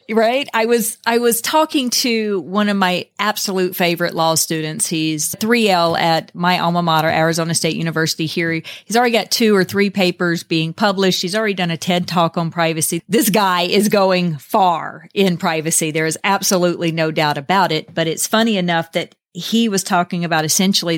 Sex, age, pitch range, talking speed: female, 40-59, 170-205 Hz, 185 wpm